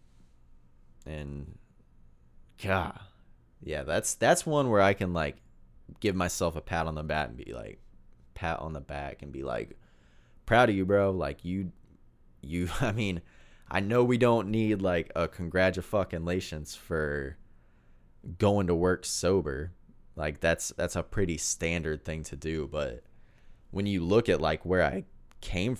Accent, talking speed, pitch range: American, 155 wpm, 65-90 Hz